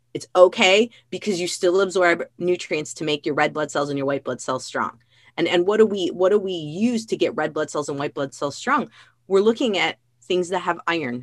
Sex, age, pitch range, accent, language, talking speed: female, 30-49, 140-195 Hz, American, English, 240 wpm